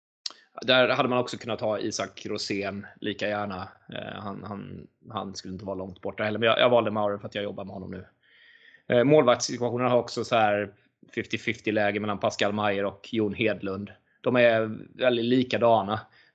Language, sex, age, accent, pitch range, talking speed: Swedish, male, 20-39, native, 105-125 Hz, 175 wpm